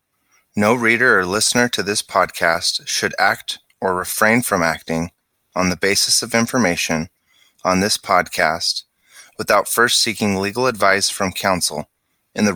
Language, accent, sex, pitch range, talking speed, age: English, American, male, 95-120 Hz, 145 wpm, 30-49